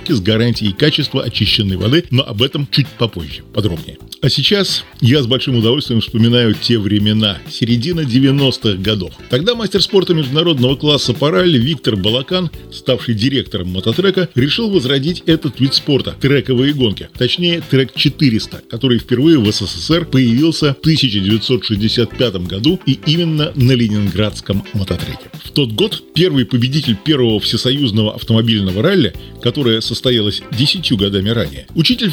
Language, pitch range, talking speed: Russian, 110-155 Hz, 140 wpm